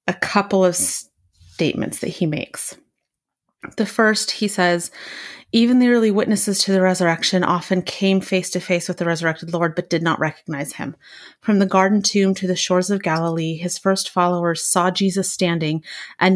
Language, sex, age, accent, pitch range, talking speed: English, female, 30-49, American, 170-200 Hz, 175 wpm